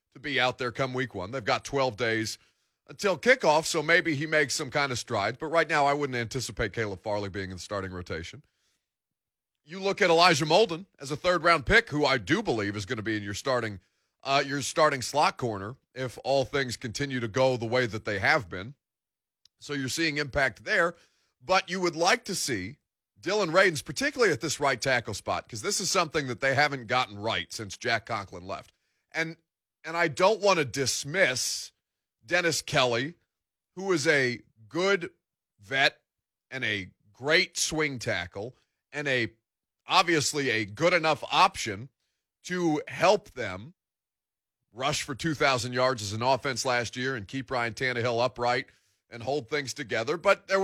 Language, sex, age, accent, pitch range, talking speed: English, male, 30-49, American, 115-160 Hz, 180 wpm